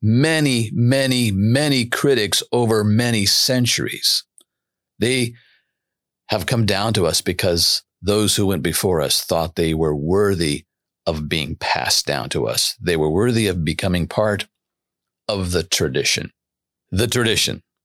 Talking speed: 135 wpm